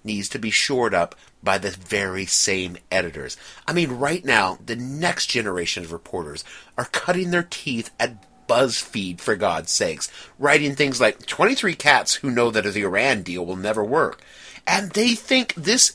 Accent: American